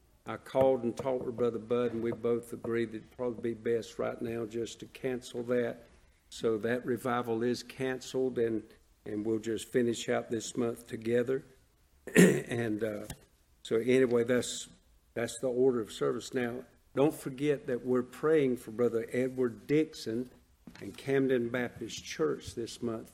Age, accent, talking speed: 50-69, American, 165 wpm